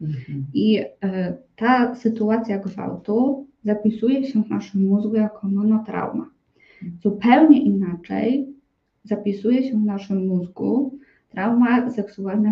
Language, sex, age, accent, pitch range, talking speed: Polish, female, 20-39, native, 190-225 Hz, 95 wpm